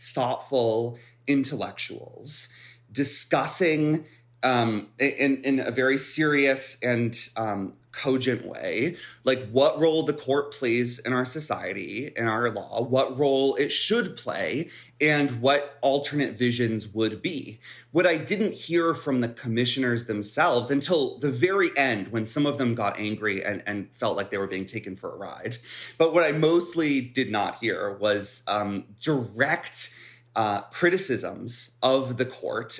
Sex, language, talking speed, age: male, English, 145 wpm, 30-49